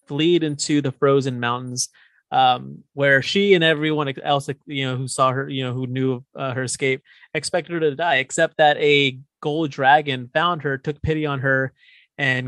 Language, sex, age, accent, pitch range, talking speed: English, male, 30-49, American, 125-145 Hz, 190 wpm